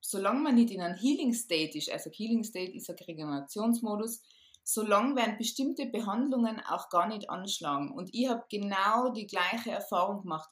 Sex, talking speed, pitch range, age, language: female, 160 wpm, 185-230 Hz, 20-39, German